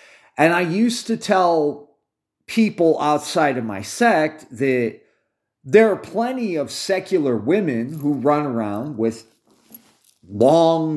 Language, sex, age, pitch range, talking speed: English, male, 40-59, 120-175 Hz, 120 wpm